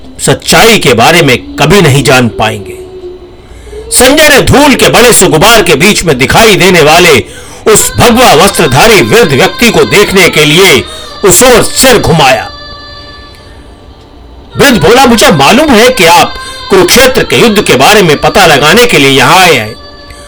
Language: Hindi